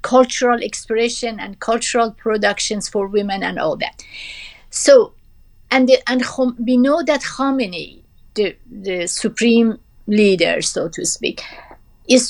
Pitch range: 205-250 Hz